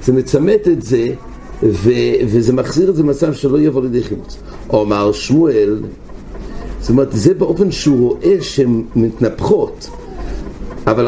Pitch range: 115-155 Hz